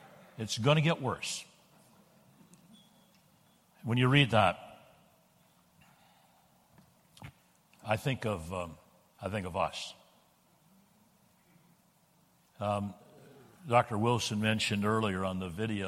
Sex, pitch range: male, 105-140 Hz